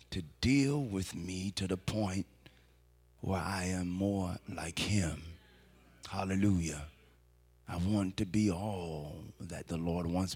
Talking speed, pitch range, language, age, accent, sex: 135 wpm, 65-100 Hz, English, 40-59, American, male